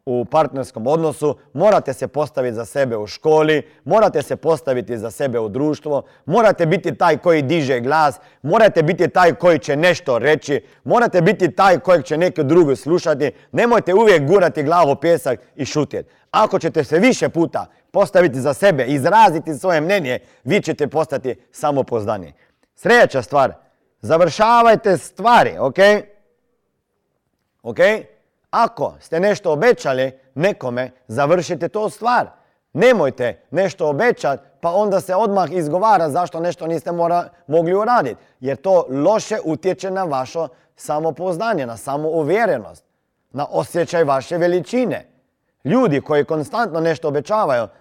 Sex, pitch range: male, 140-185 Hz